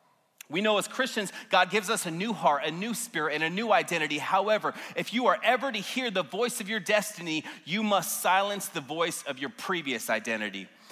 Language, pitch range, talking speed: English, 185-235 Hz, 210 wpm